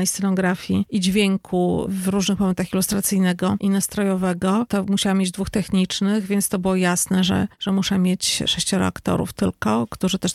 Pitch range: 190-210 Hz